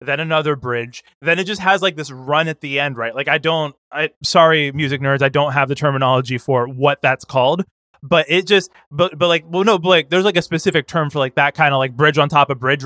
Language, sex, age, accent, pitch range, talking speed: English, male, 20-39, American, 135-165 Hz, 255 wpm